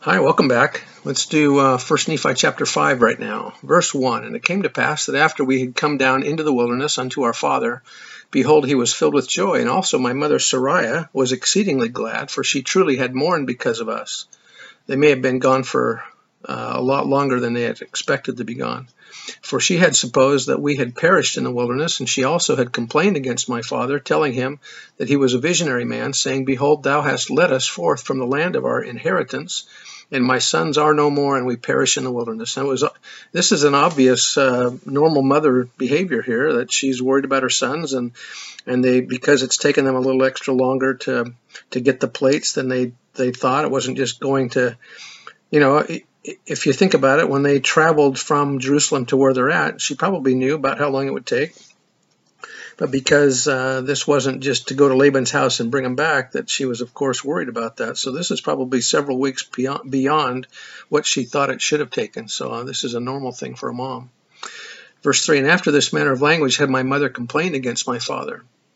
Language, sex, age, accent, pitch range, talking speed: English, male, 50-69, American, 125-145 Hz, 215 wpm